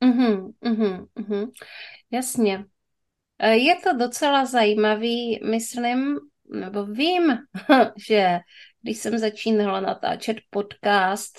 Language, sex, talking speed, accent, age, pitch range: Czech, female, 75 wpm, native, 30-49, 195-230 Hz